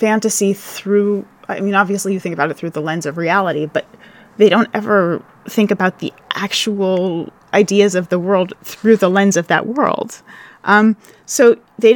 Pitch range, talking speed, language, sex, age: 180-220 Hz, 175 wpm, English, female, 30-49